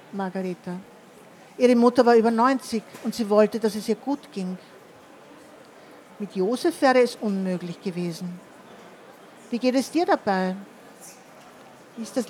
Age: 50-69